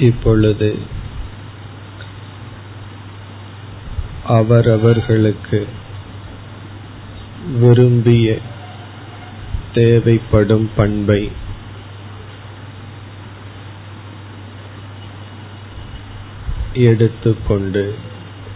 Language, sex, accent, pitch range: Tamil, male, native, 100-105 Hz